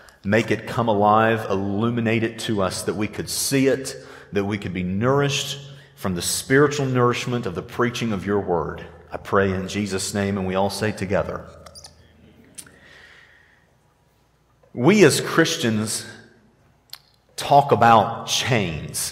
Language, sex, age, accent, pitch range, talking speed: English, male, 40-59, American, 100-140 Hz, 140 wpm